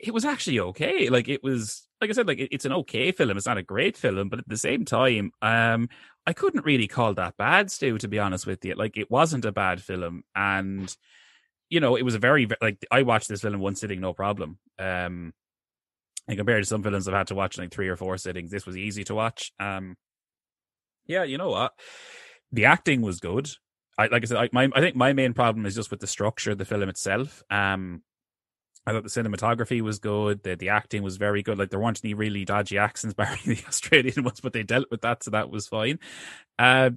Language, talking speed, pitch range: English, 235 wpm, 100-125 Hz